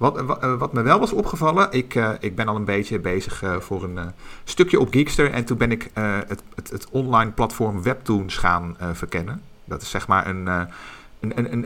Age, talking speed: 50-69, 205 wpm